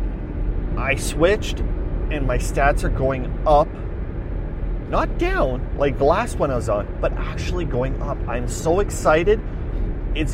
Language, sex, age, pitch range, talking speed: English, male, 30-49, 90-145 Hz, 145 wpm